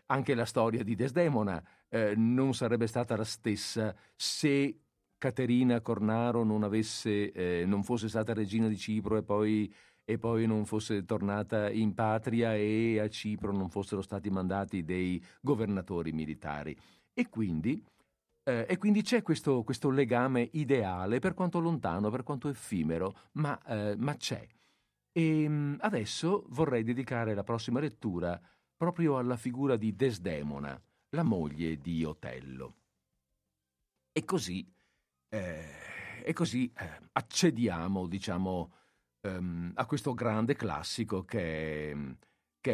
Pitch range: 90-120 Hz